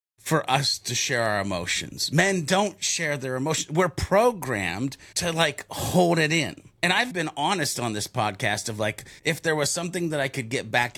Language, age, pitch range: English, 30-49, 120-165 Hz